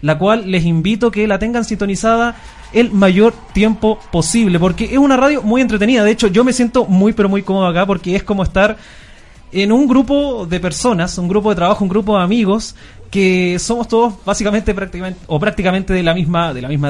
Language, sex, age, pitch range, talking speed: Spanish, male, 30-49, 170-220 Hz, 205 wpm